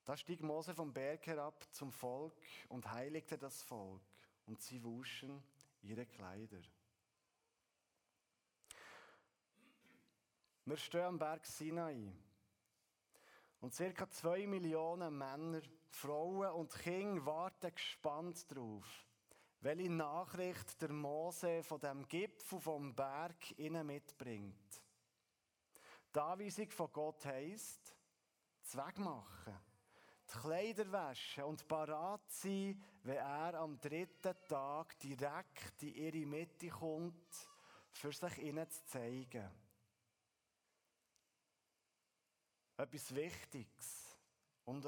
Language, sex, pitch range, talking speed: German, male, 125-165 Hz, 95 wpm